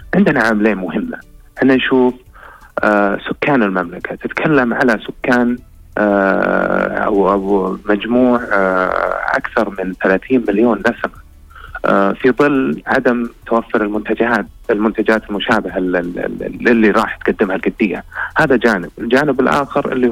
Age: 30-49